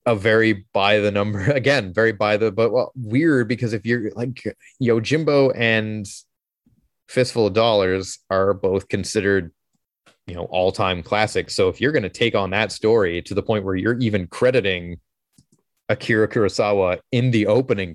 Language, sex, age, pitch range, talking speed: English, male, 30-49, 95-120 Hz, 165 wpm